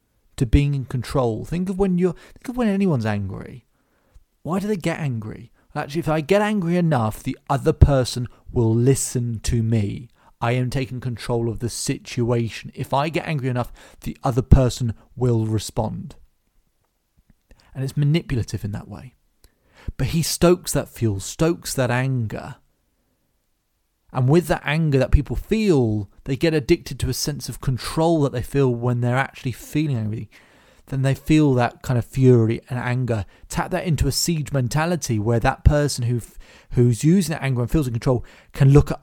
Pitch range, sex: 115-150 Hz, male